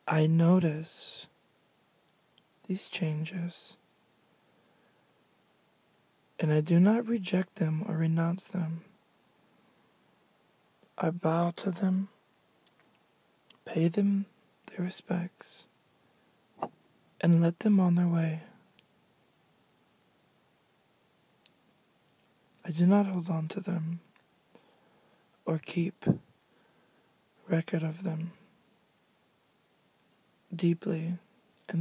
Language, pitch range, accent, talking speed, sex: English, 165-195 Hz, American, 75 wpm, male